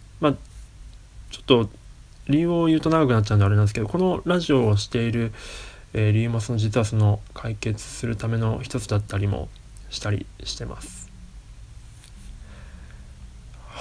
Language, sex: Japanese, male